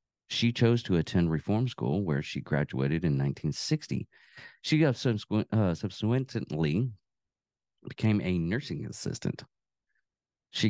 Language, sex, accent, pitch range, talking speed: English, male, American, 90-125 Hz, 100 wpm